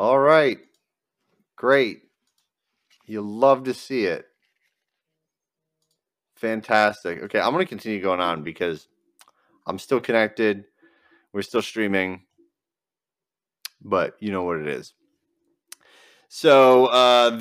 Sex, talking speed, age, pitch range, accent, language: male, 105 wpm, 30-49, 100-125 Hz, American, English